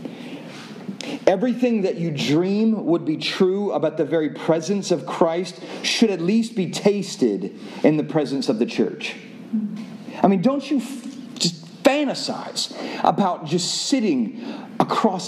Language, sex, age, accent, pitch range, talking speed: English, male, 40-59, American, 170-235 Hz, 140 wpm